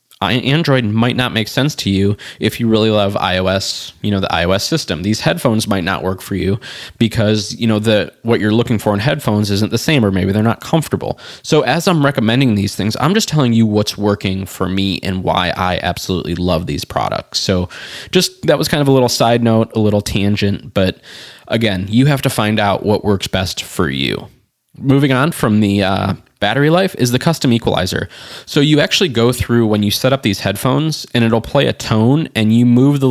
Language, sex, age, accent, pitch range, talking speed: English, male, 20-39, American, 95-120 Hz, 215 wpm